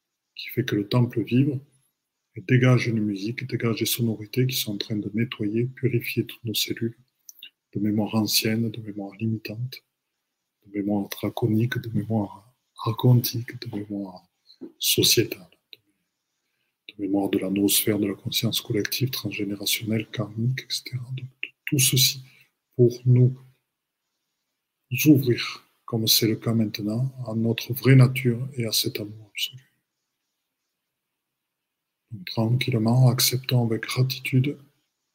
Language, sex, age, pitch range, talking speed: French, male, 20-39, 110-130 Hz, 125 wpm